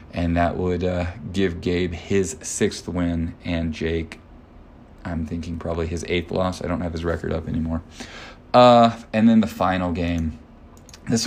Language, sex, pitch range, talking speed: English, male, 85-95 Hz, 165 wpm